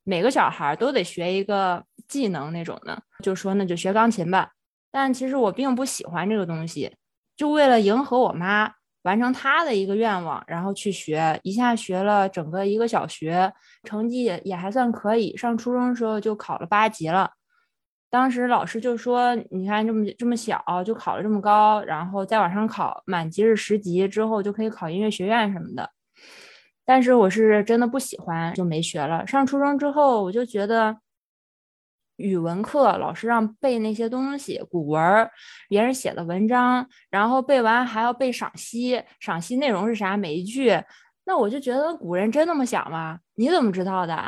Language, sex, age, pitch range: Chinese, female, 20-39, 195-255 Hz